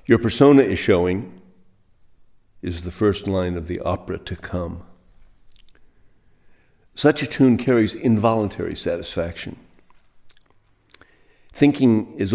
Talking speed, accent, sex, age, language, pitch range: 100 wpm, American, male, 60-79, English, 90-115 Hz